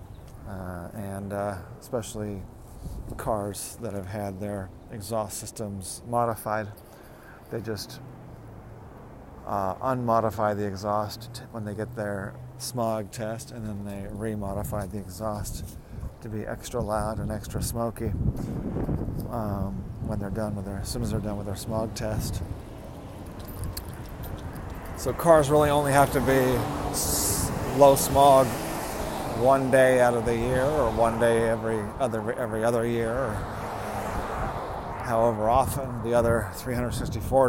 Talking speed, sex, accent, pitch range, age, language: 130 wpm, male, American, 100-120 Hz, 40-59, English